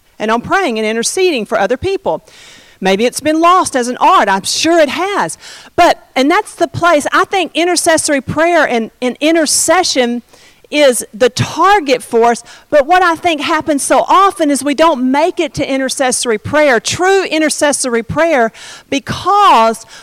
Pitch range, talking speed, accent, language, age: 245-325 Hz, 165 wpm, American, English, 50-69